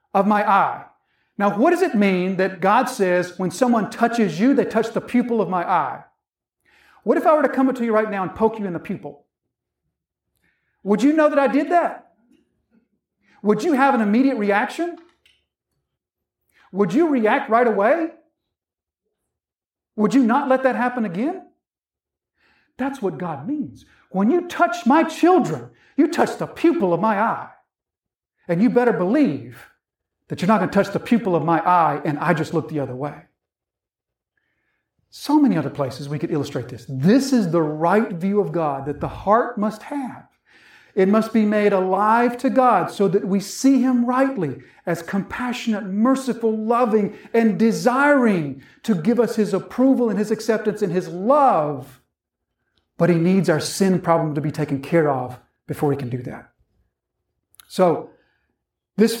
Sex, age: male, 50-69